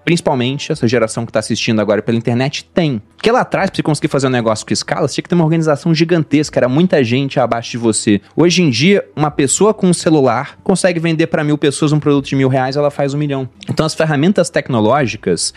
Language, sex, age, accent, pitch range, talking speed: Portuguese, male, 20-39, Brazilian, 125-170 Hz, 230 wpm